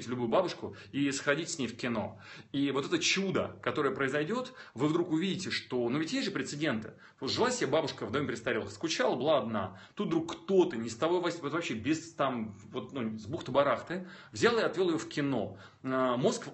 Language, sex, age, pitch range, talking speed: Russian, male, 30-49, 125-175 Hz, 190 wpm